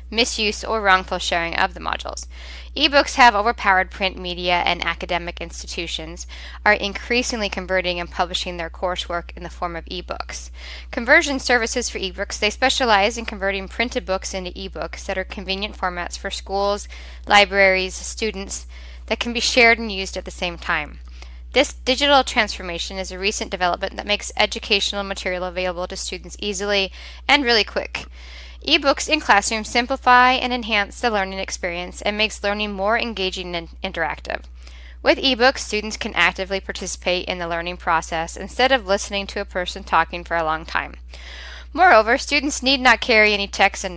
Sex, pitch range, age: female, 175-215 Hz, 10-29